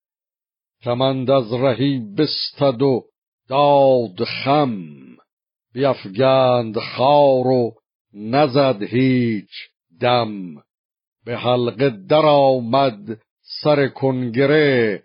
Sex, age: male, 50-69